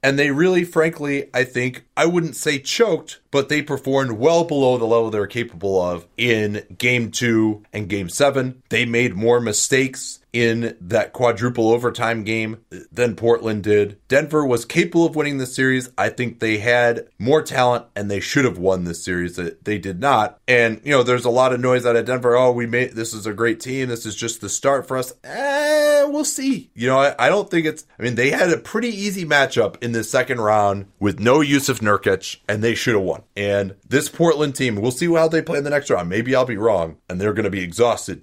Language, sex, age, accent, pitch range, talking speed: English, male, 30-49, American, 105-140 Hz, 225 wpm